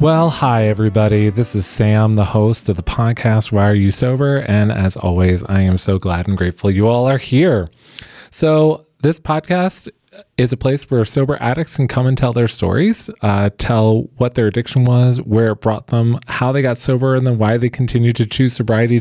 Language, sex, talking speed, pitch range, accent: English, male, 205 wpm, 95-130 Hz, American